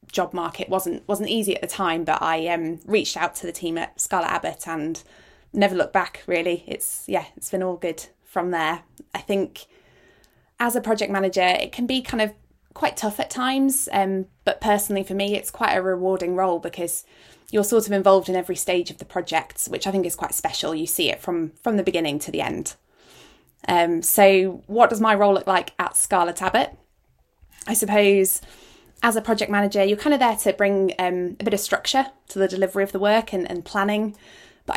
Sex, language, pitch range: female, English, 180-210 Hz